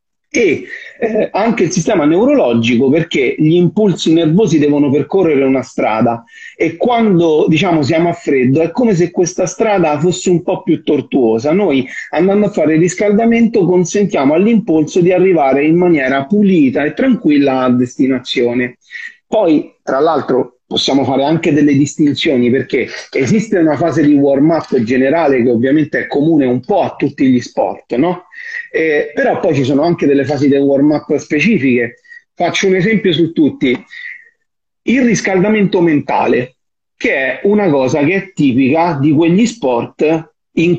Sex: male